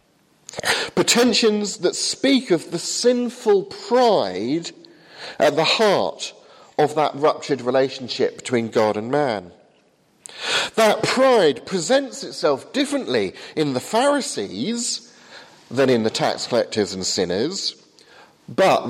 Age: 40-59